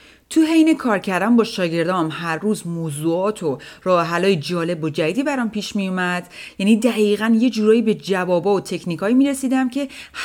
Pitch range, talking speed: 160-210 Hz, 165 wpm